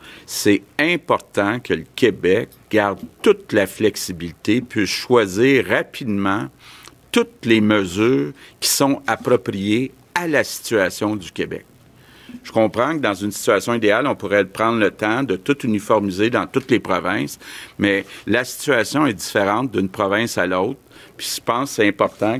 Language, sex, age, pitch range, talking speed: French, male, 50-69, 95-120 Hz, 155 wpm